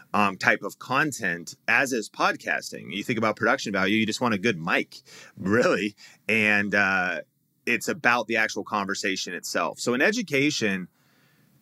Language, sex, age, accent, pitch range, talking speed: English, male, 30-49, American, 100-125 Hz, 155 wpm